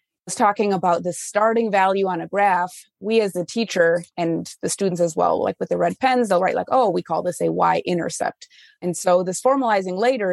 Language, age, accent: English, 20-39, American